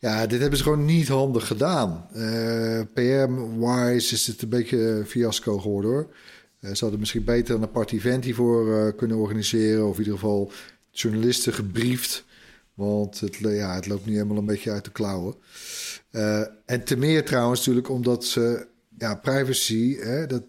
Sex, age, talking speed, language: male, 40-59, 175 wpm, Dutch